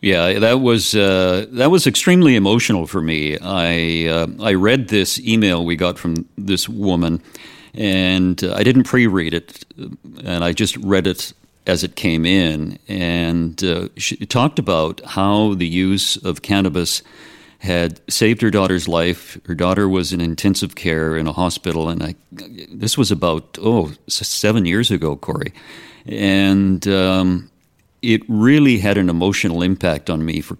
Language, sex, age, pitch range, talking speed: English, male, 50-69, 85-110 Hz, 160 wpm